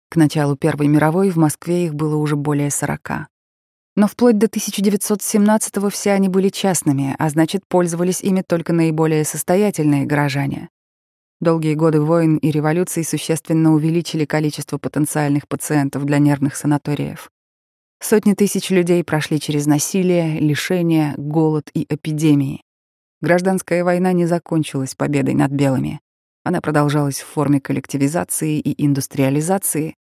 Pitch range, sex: 150-180 Hz, female